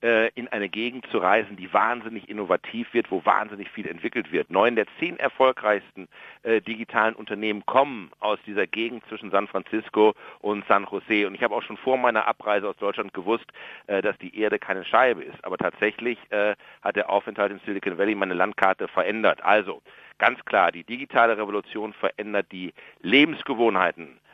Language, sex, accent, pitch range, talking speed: German, male, German, 100-120 Hz, 175 wpm